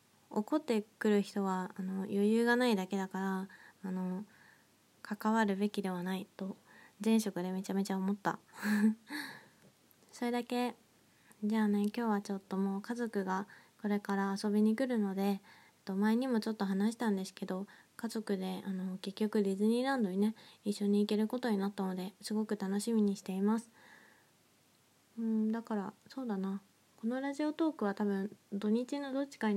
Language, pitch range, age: Japanese, 200-225 Hz, 20-39